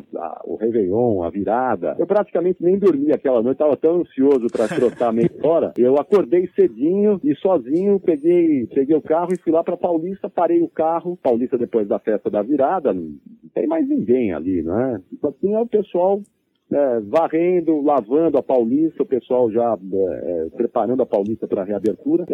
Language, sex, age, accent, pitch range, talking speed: Portuguese, male, 40-59, Brazilian, 135-205 Hz, 180 wpm